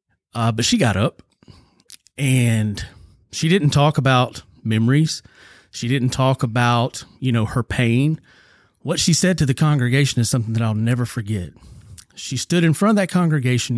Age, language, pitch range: 30-49, English, 110-155 Hz